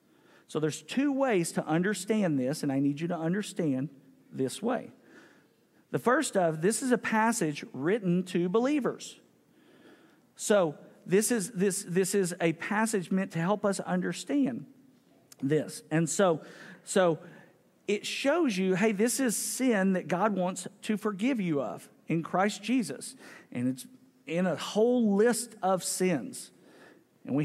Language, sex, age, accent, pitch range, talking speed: English, male, 50-69, American, 165-225 Hz, 150 wpm